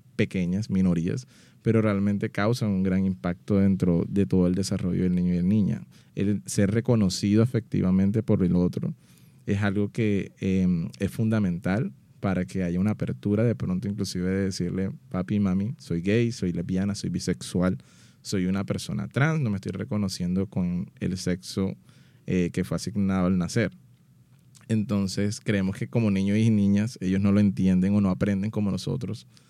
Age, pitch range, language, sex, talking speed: 20-39, 95-105 Hz, Spanish, male, 165 wpm